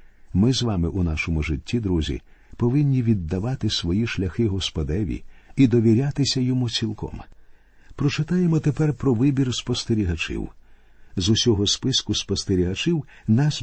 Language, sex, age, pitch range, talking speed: Ukrainian, male, 50-69, 95-125 Hz, 115 wpm